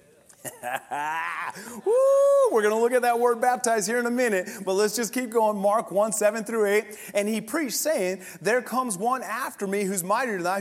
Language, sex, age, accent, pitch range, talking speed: English, male, 30-49, American, 210-250 Hz, 205 wpm